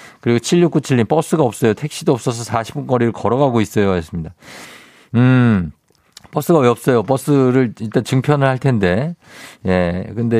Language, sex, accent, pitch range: Korean, male, native, 95-130 Hz